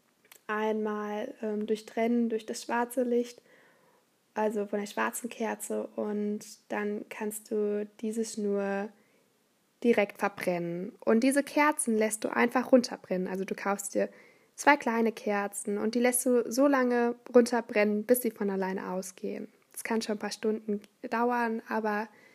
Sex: female